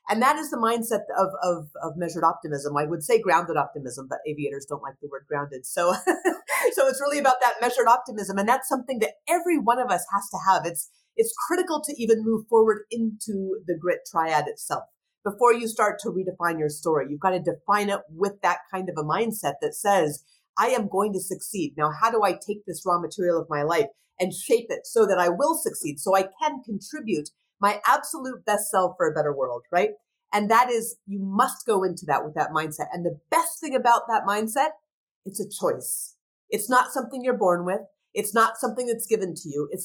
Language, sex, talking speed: English, female, 220 wpm